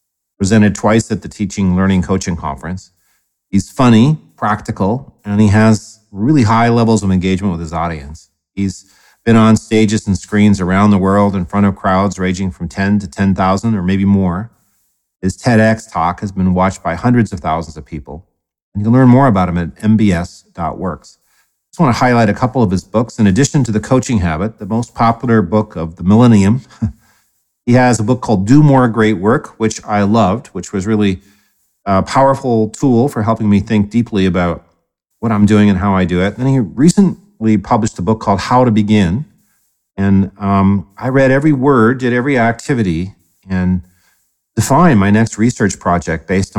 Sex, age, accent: male, 40-59, American